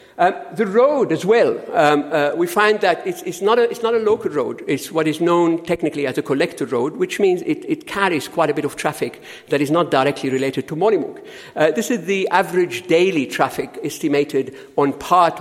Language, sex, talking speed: English, male, 205 wpm